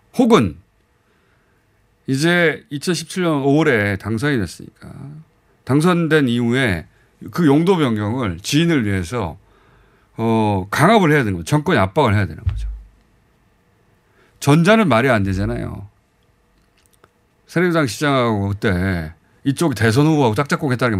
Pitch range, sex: 100-160 Hz, male